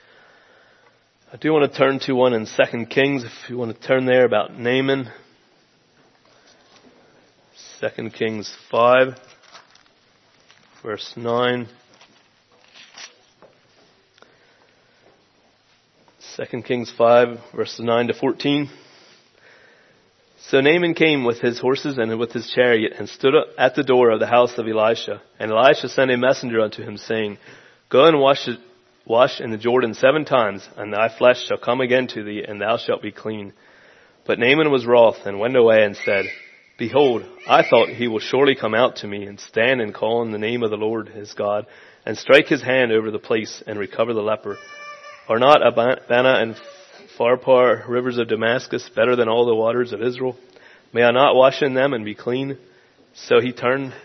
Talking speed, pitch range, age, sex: 165 wpm, 110-130 Hz, 30-49, male